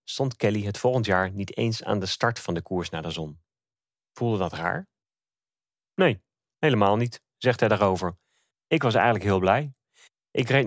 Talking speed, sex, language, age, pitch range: 180 wpm, male, English, 30-49, 95-125 Hz